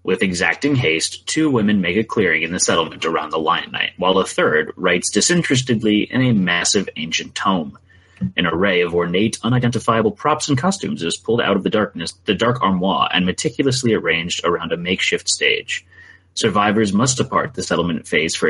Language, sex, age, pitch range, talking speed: English, male, 30-49, 90-140 Hz, 180 wpm